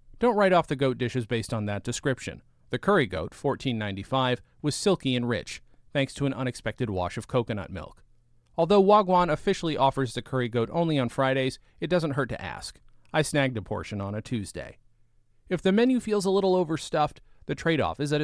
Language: English